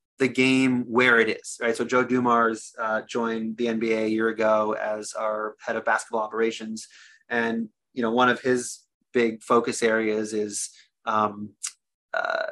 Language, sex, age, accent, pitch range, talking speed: English, male, 30-49, American, 110-125 Hz, 160 wpm